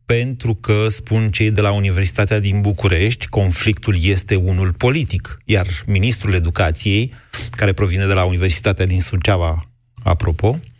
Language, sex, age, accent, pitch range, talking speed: Romanian, male, 30-49, native, 95-115 Hz, 135 wpm